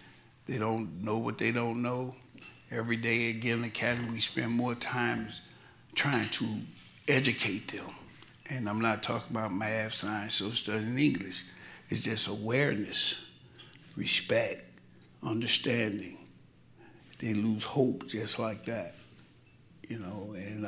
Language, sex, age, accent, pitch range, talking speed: English, male, 60-79, American, 110-125 Hz, 125 wpm